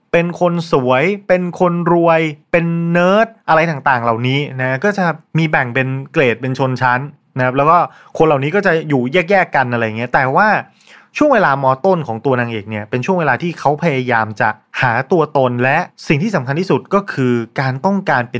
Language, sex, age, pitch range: Thai, male, 20-39, 125-175 Hz